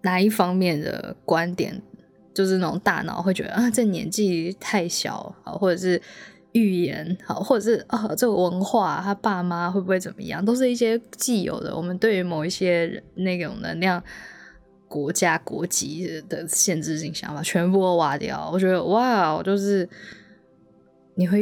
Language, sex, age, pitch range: Chinese, female, 20-39, 165-210 Hz